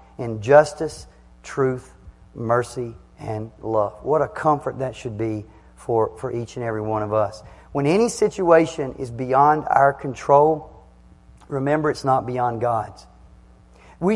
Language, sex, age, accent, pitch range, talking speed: English, male, 40-59, American, 115-155 Hz, 140 wpm